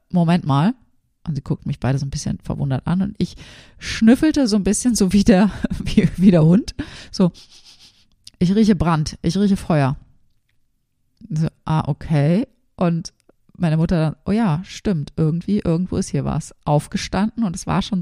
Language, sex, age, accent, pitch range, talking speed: German, female, 30-49, German, 150-195 Hz, 175 wpm